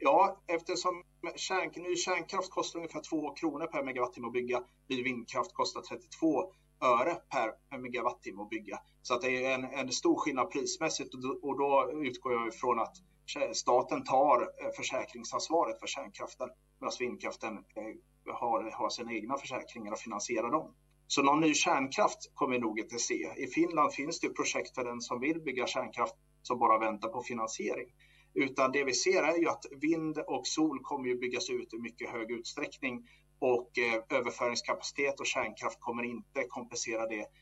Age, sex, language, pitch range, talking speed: 30-49, male, English, 125-180 Hz, 165 wpm